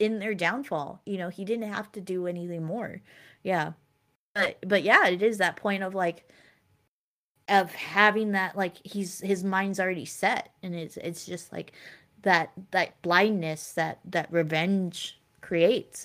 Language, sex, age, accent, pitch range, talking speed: English, female, 20-39, American, 170-205 Hz, 160 wpm